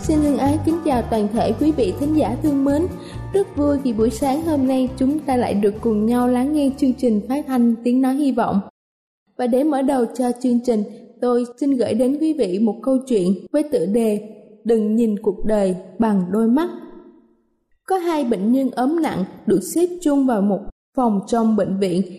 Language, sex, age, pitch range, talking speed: Vietnamese, female, 20-39, 215-270 Hz, 210 wpm